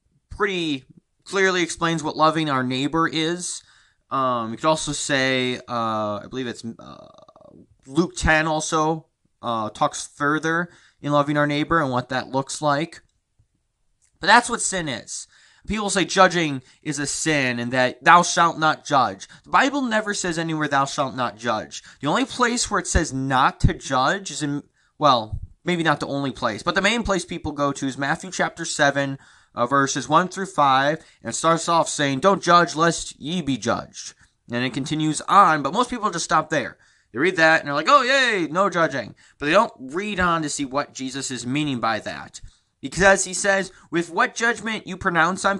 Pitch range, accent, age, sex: 140-180 Hz, American, 20-39, male